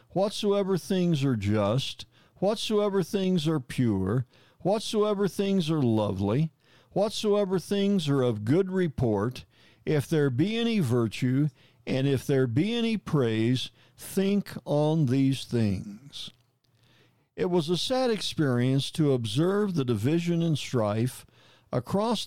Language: English